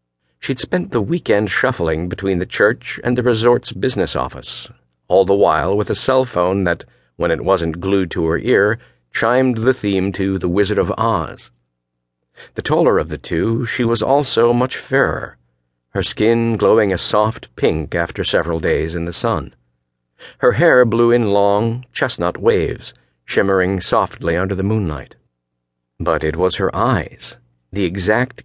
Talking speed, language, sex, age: 160 wpm, English, male, 50-69